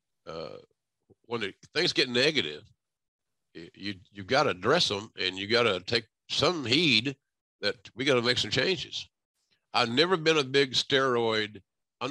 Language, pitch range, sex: English, 105-140 Hz, male